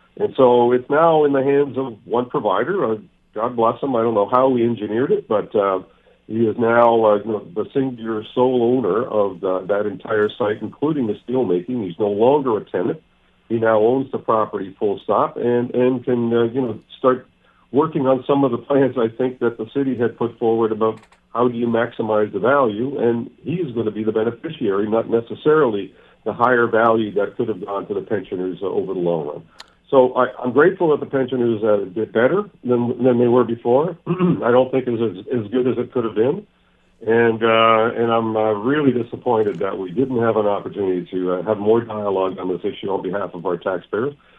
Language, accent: English, American